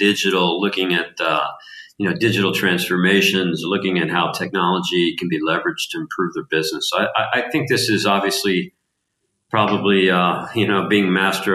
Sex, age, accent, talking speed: male, 50-69, American, 165 wpm